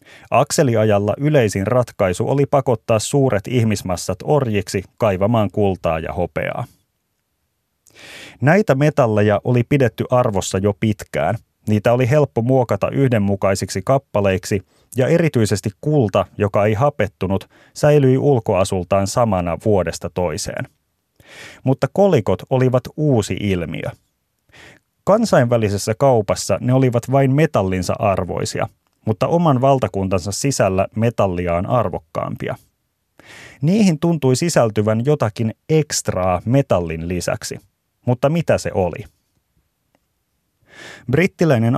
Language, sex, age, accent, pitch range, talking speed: Finnish, male, 30-49, native, 100-135 Hz, 95 wpm